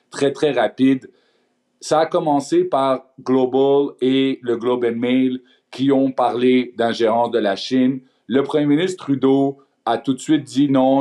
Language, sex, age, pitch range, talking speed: French, male, 50-69, 125-145 Hz, 165 wpm